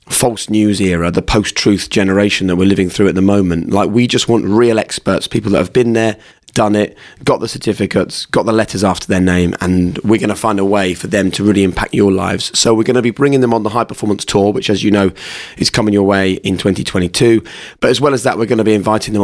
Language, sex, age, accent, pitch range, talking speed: English, male, 30-49, British, 95-110 Hz, 255 wpm